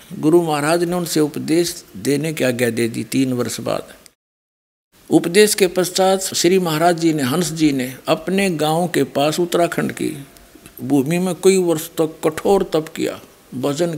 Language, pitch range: Hindi, 155-190 Hz